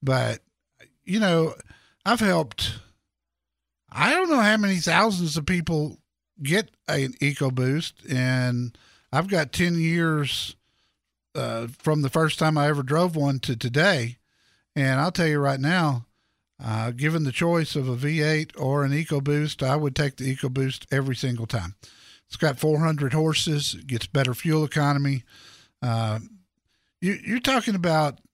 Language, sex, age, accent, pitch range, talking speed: English, male, 50-69, American, 130-170 Hz, 150 wpm